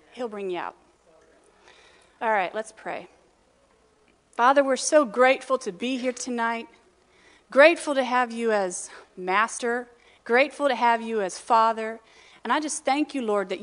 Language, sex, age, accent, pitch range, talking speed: English, female, 40-59, American, 210-270 Hz, 155 wpm